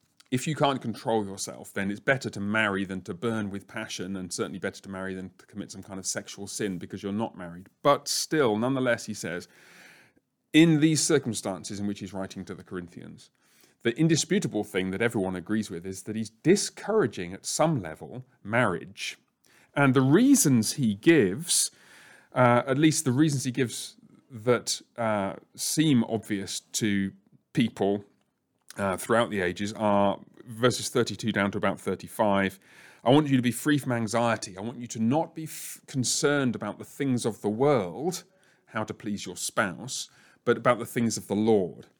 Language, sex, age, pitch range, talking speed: English, male, 30-49, 100-145 Hz, 175 wpm